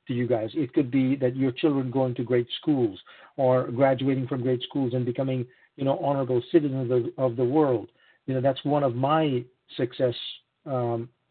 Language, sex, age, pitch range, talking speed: English, male, 50-69, 125-155 Hz, 190 wpm